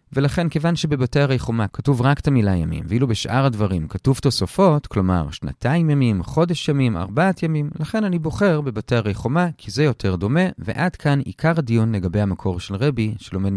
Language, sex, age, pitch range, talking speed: Hebrew, male, 30-49, 100-150 Hz, 180 wpm